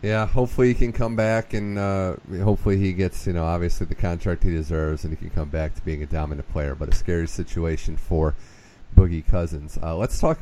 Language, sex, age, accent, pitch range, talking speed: English, male, 30-49, American, 85-100 Hz, 220 wpm